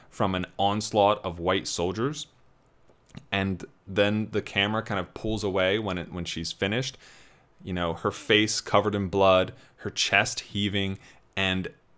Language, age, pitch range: English, 20-39, 90-120 Hz